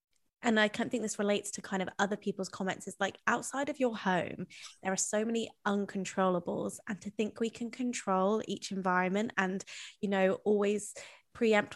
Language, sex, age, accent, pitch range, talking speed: English, female, 20-39, British, 195-215 Hz, 185 wpm